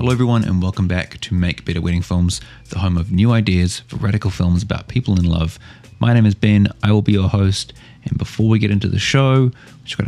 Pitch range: 95-115 Hz